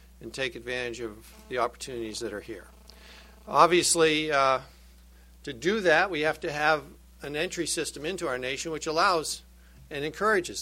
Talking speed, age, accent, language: 160 wpm, 60-79, American, English